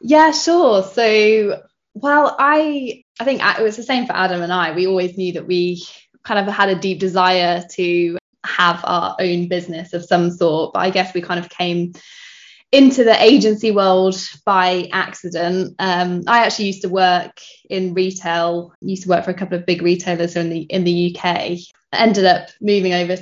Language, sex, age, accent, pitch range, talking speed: English, female, 10-29, British, 175-200 Hz, 195 wpm